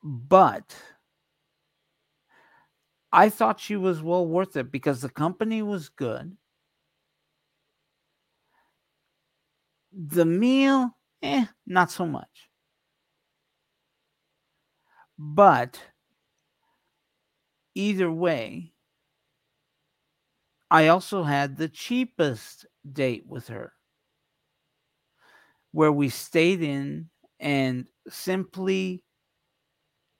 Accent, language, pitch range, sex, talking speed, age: American, English, 140-185 Hz, male, 70 wpm, 50-69